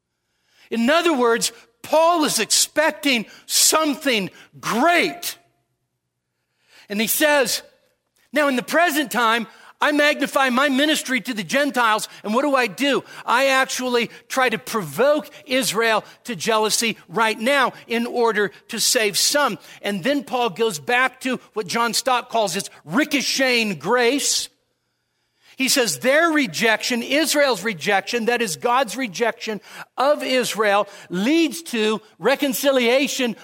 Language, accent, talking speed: English, American, 125 wpm